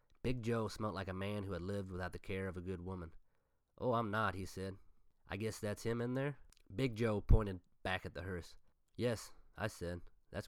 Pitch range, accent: 90-105 Hz, American